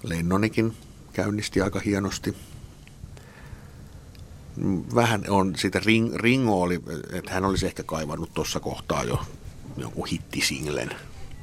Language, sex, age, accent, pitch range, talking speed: Finnish, male, 50-69, native, 80-100 Hz, 105 wpm